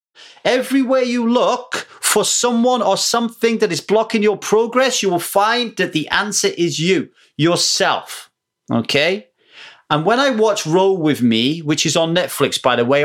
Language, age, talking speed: English, 30-49, 165 wpm